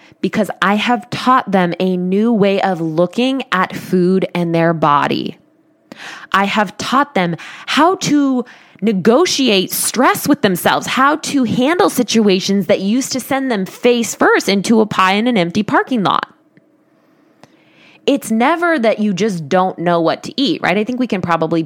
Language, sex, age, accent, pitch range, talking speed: English, female, 20-39, American, 175-245 Hz, 165 wpm